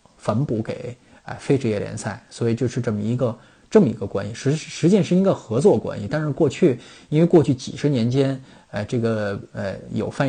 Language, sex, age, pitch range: Chinese, male, 20-39, 110-145 Hz